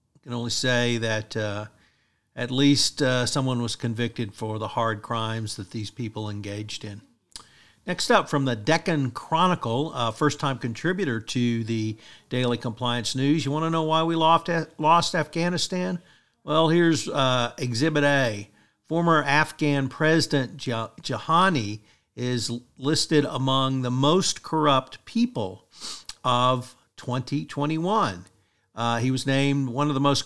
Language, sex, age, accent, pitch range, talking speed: English, male, 50-69, American, 120-155 Hz, 140 wpm